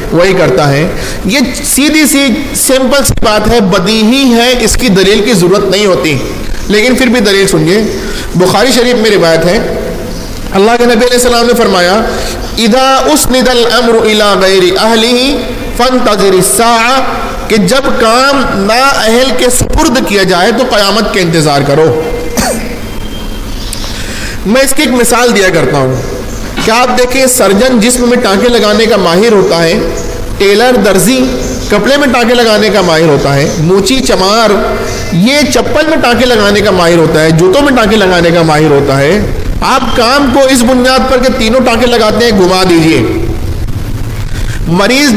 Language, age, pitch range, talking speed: Urdu, 50-69, 180-245 Hz, 160 wpm